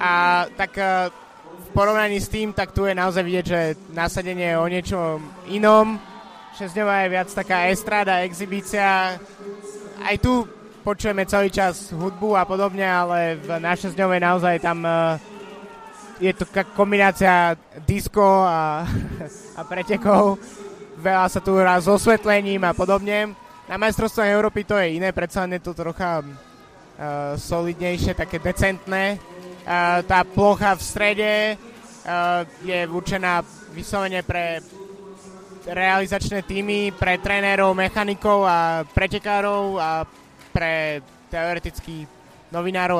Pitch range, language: 175-200 Hz, Slovak